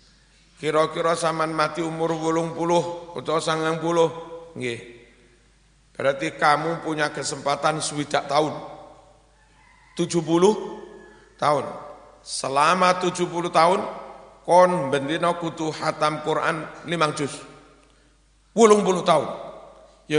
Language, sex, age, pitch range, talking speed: Indonesian, male, 60-79, 135-165 Hz, 90 wpm